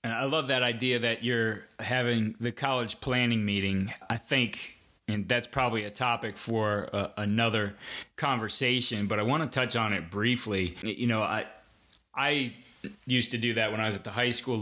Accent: American